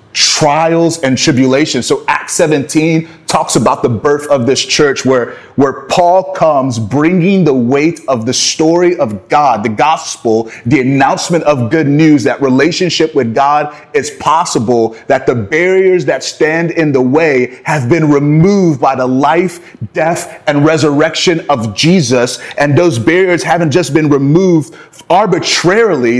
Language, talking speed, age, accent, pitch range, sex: English, 150 wpm, 30-49, American, 130-175 Hz, male